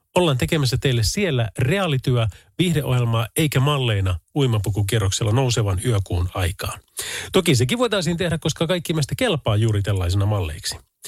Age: 30-49